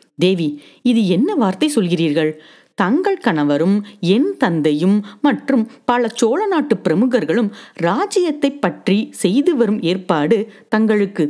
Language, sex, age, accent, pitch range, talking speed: Tamil, female, 30-49, native, 160-260 Hz, 95 wpm